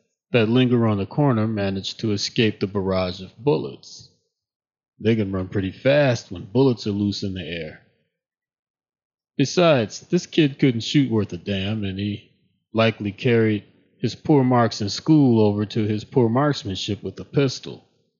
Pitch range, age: 105-130 Hz, 30-49